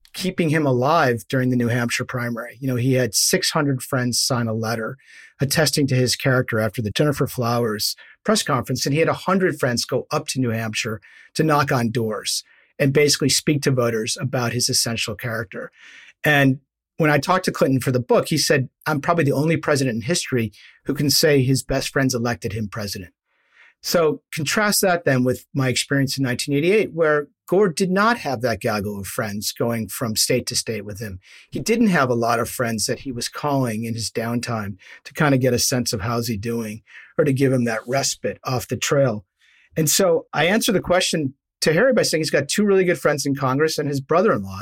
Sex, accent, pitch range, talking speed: male, American, 120-160 Hz, 210 wpm